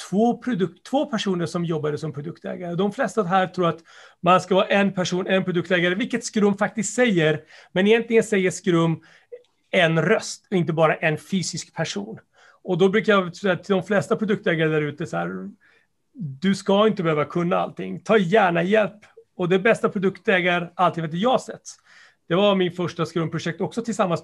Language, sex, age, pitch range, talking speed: Swedish, male, 40-59, 165-205 Hz, 180 wpm